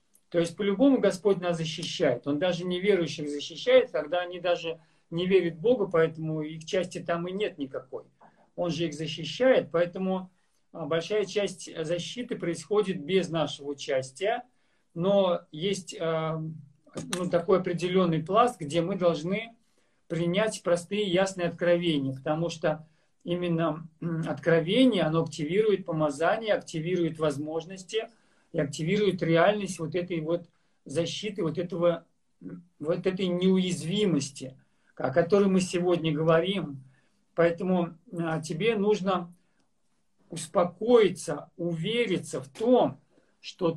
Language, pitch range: Russian, 165-195 Hz